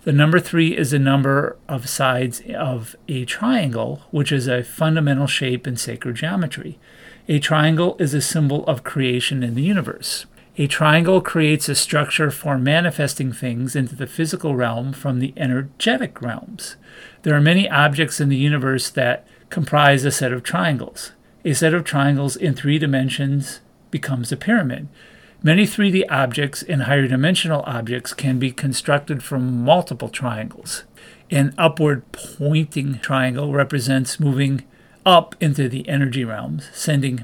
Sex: male